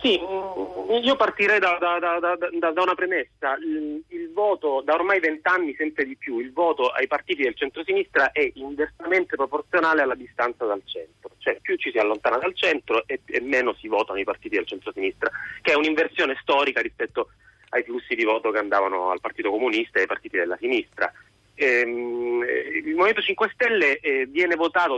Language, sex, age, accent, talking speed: Italian, male, 30-49, native, 175 wpm